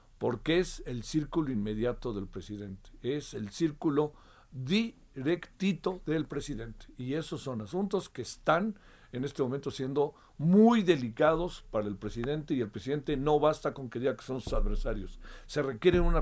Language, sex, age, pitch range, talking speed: Spanish, male, 50-69, 120-180 Hz, 160 wpm